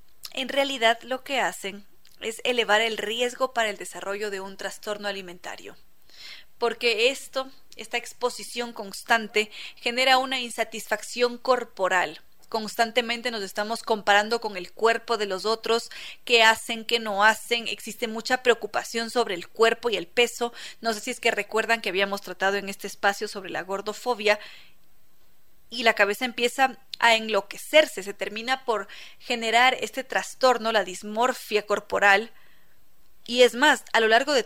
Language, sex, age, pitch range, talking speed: Spanish, female, 30-49, 210-250 Hz, 150 wpm